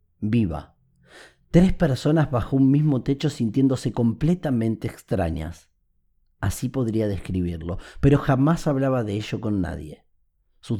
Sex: male